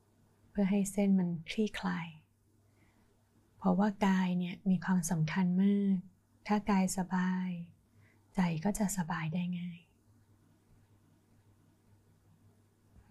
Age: 20-39